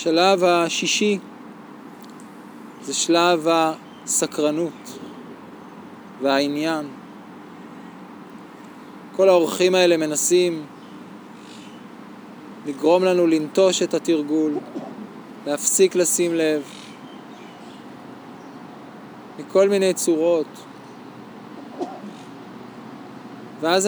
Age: 20-39